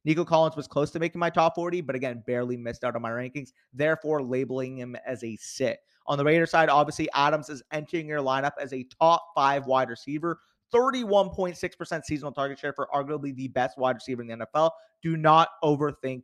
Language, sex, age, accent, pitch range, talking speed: English, male, 30-49, American, 130-170 Hz, 205 wpm